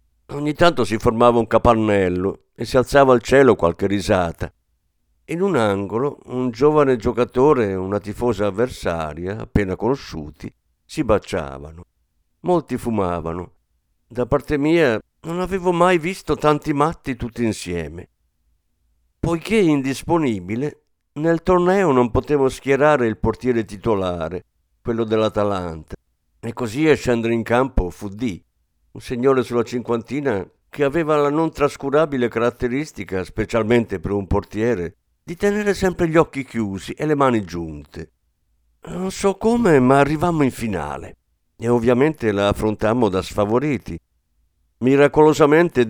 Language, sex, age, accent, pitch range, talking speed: Italian, male, 50-69, native, 90-140 Hz, 125 wpm